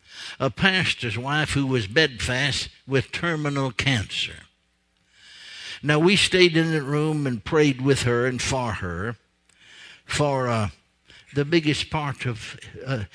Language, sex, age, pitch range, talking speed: English, male, 60-79, 105-150 Hz, 130 wpm